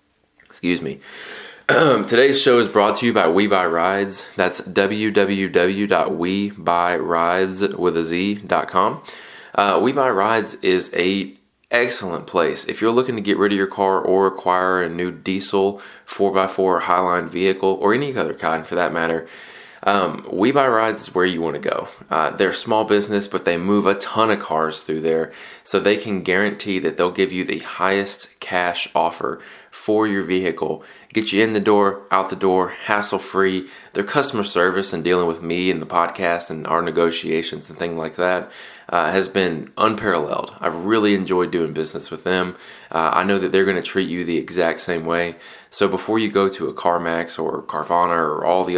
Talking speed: 190 wpm